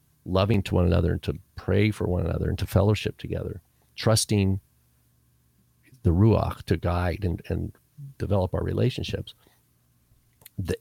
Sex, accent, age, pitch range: male, American, 50-69, 85-115 Hz